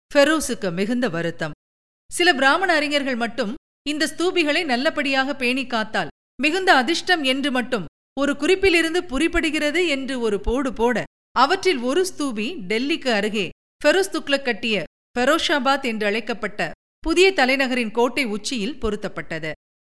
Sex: female